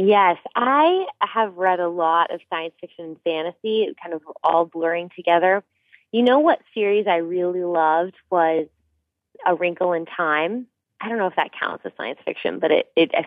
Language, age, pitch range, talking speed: English, 20-39, 160-185 Hz, 185 wpm